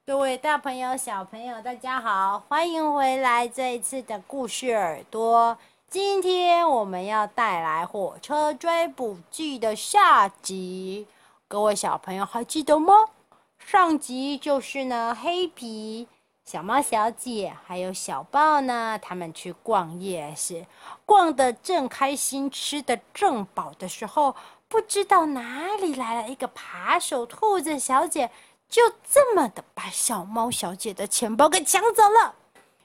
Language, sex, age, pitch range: Chinese, female, 30-49, 205-305 Hz